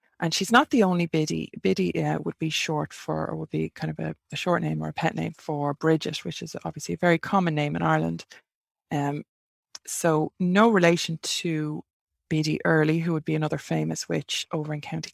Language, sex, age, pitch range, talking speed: English, female, 20-39, 150-170 Hz, 205 wpm